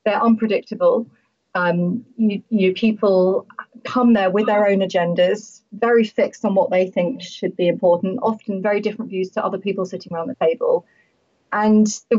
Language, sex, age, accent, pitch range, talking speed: English, female, 30-49, British, 175-215 Hz, 165 wpm